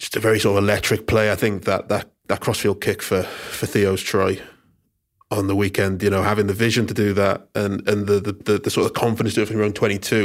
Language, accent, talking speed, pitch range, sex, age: English, British, 260 wpm, 100-110 Hz, male, 20-39